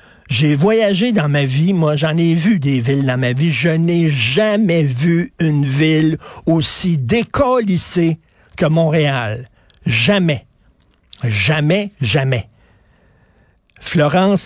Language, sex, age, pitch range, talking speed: French, male, 50-69, 140-190 Hz, 115 wpm